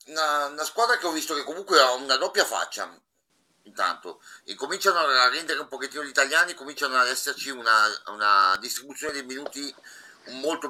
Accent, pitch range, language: native, 115-165 Hz, Italian